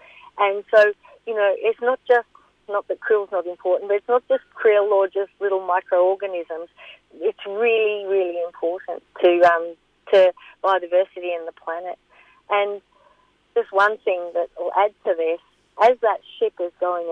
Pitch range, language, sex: 175-220 Hz, English, female